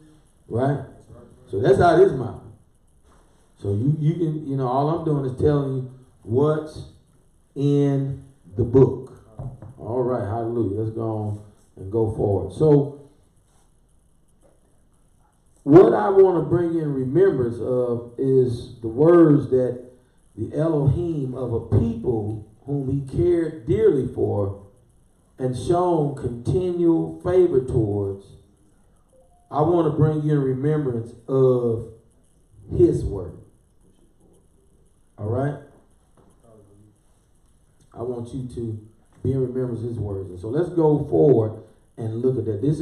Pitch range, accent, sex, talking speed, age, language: 110-140 Hz, American, male, 130 wpm, 40-59, English